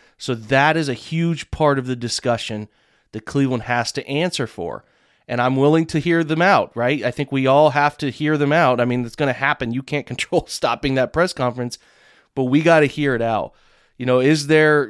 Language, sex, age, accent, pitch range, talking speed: English, male, 30-49, American, 120-145 Hz, 225 wpm